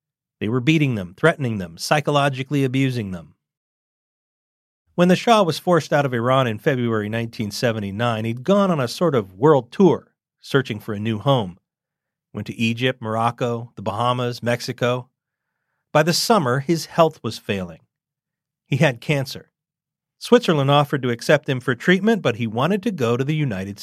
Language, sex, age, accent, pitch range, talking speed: English, male, 40-59, American, 115-155 Hz, 165 wpm